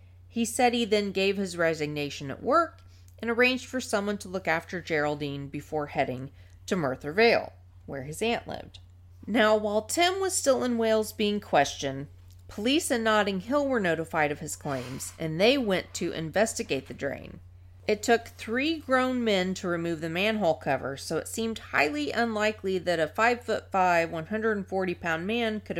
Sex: female